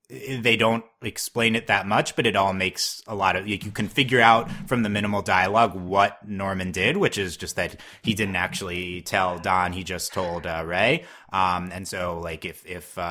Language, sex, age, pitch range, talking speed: English, male, 30-49, 95-120 Hz, 205 wpm